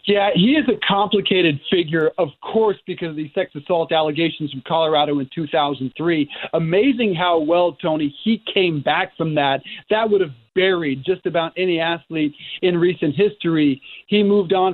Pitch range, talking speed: 165-205 Hz, 165 wpm